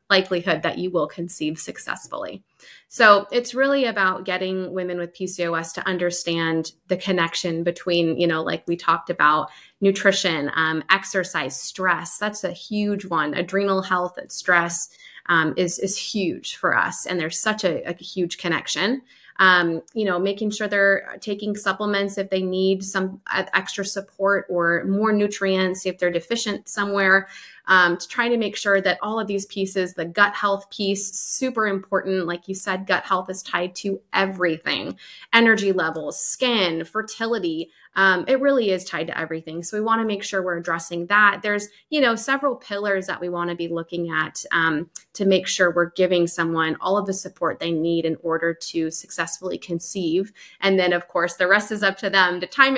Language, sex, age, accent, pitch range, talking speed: English, female, 20-39, American, 175-205 Hz, 180 wpm